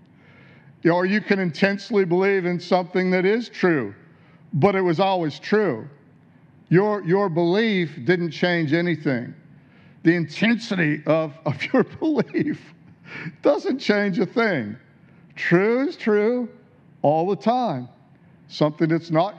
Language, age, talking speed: English, 50-69, 125 wpm